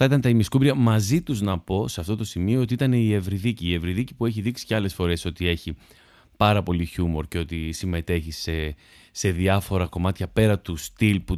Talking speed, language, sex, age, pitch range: 210 wpm, Greek, male, 30-49, 90-120 Hz